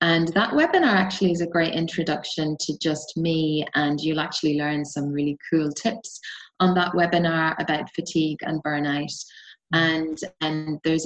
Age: 20-39